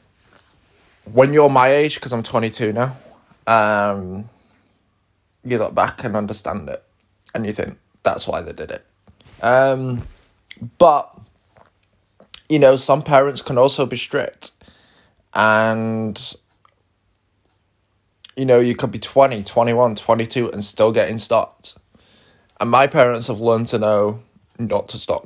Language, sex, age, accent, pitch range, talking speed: English, male, 20-39, British, 100-125 Hz, 135 wpm